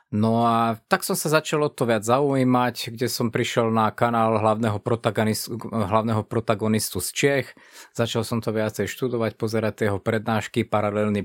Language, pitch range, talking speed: Slovak, 110-135 Hz, 155 wpm